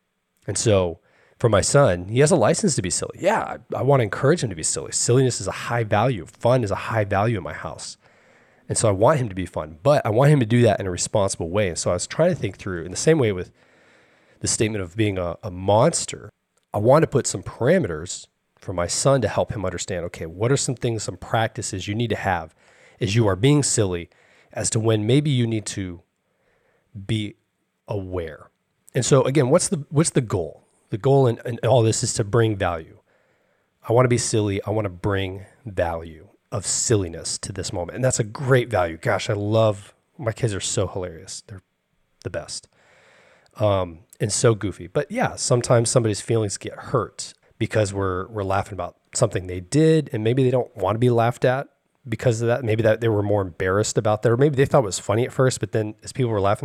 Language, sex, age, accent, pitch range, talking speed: English, male, 30-49, American, 100-125 Hz, 225 wpm